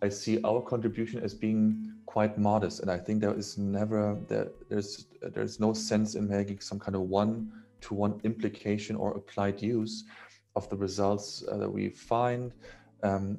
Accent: German